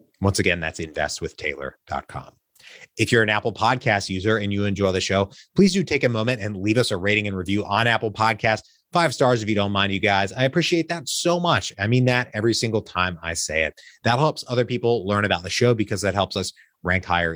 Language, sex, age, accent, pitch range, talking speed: English, male, 30-49, American, 90-115 Hz, 230 wpm